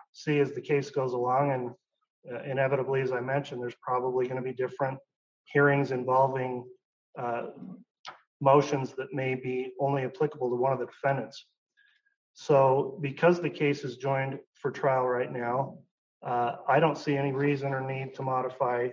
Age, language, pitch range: 40-59, English, 125-145 Hz